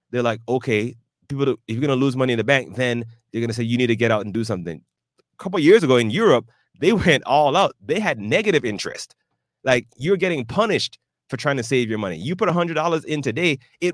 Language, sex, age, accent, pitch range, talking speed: English, male, 30-49, American, 115-140 Hz, 255 wpm